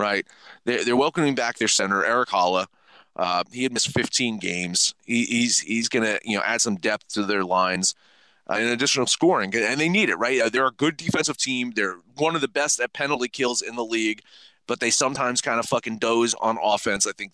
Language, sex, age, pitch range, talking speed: English, male, 30-49, 100-130 Hz, 215 wpm